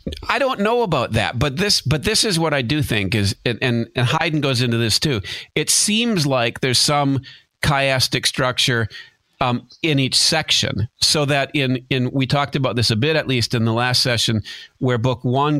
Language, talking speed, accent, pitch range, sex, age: English, 205 wpm, American, 105-140 Hz, male, 40-59